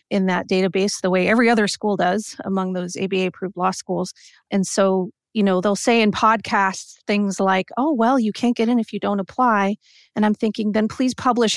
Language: English